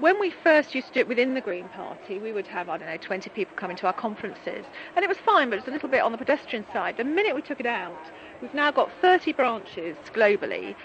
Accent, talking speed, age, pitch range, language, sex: British, 270 wpm, 40-59, 215-275 Hz, English, female